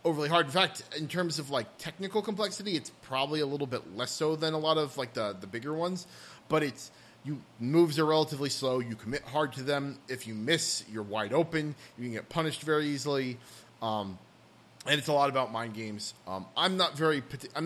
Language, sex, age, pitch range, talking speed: English, male, 30-49, 115-145 Hz, 215 wpm